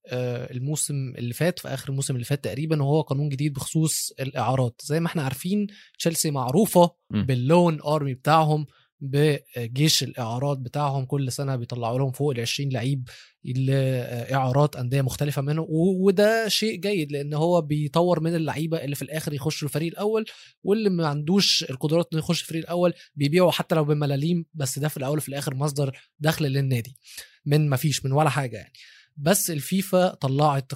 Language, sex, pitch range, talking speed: Arabic, male, 135-170 Hz, 165 wpm